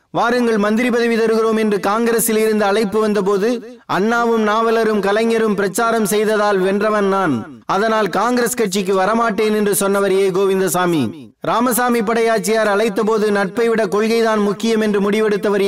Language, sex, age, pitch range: Tamil, male, 30-49, 195-225 Hz